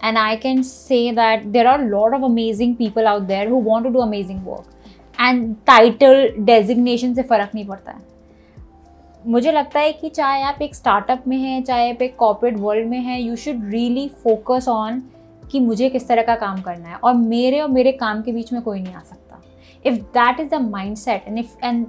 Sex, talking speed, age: female, 210 wpm, 20-39